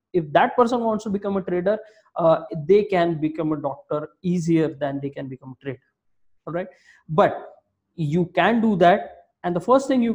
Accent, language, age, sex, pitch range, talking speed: Indian, English, 20-39, male, 155-210 Hz, 195 wpm